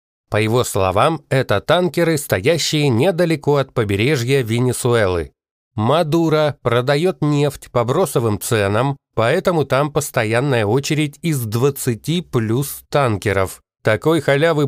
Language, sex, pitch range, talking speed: Russian, male, 115-150 Hz, 105 wpm